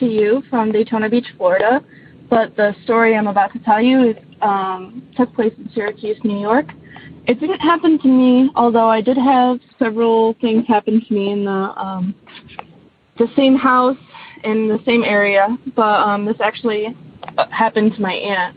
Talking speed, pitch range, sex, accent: 165 wpm, 205-250 Hz, female, American